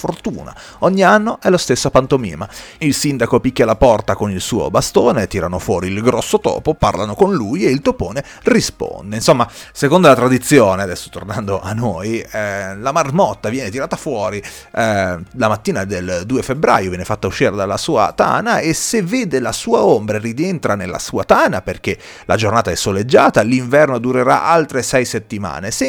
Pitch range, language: 95-130 Hz, Italian